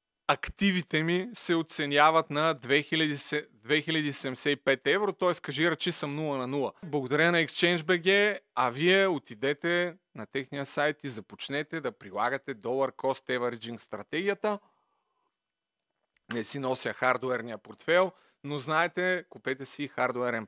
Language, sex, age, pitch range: Bulgarian, male, 30-49, 135-175 Hz